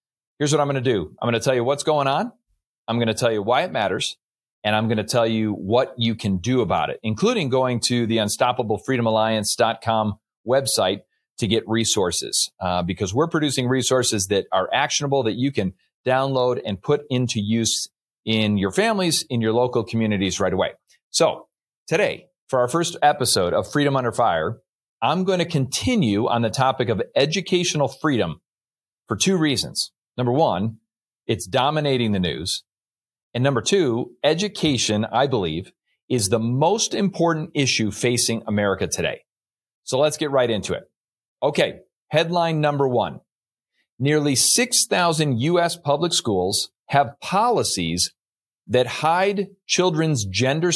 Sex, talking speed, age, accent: male, 155 wpm, 30-49, American